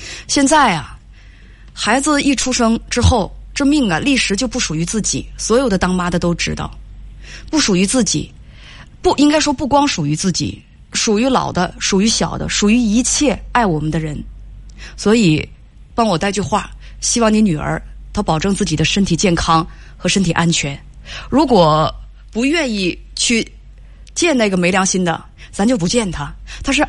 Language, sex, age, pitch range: Chinese, female, 20-39, 170-255 Hz